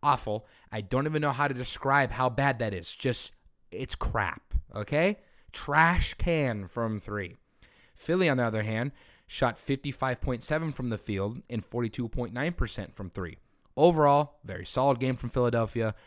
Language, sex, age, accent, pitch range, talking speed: English, male, 30-49, American, 105-140 Hz, 150 wpm